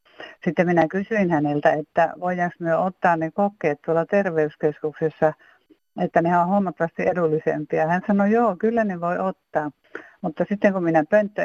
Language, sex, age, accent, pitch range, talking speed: Finnish, female, 60-79, native, 155-180 Hz, 150 wpm